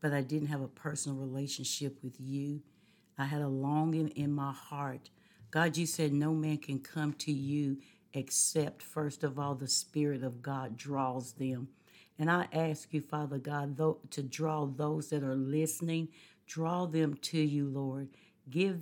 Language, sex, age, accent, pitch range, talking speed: English, female, 60-79, American, 140-160 Hz, 170 wpm